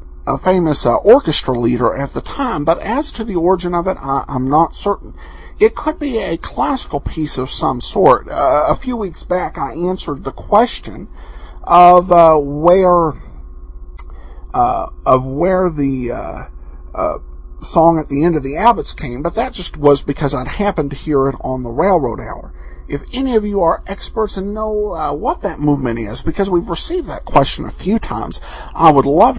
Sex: male